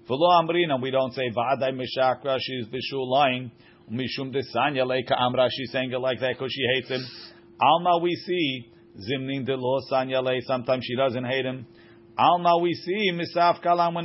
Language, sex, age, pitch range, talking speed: English, male, 50-69, 125-170 Hz, 110 wpm